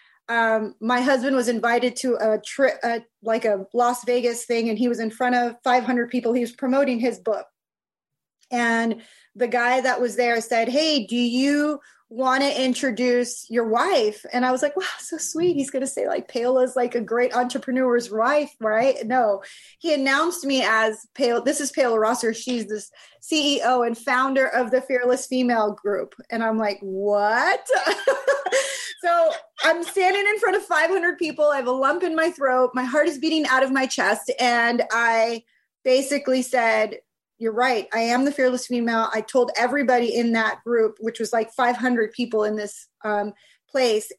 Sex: female